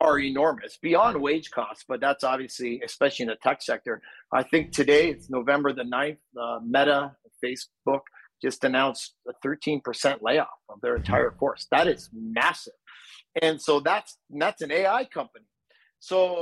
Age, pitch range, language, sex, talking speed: 40-59, 135-180 Hz, English, male, 155 wpm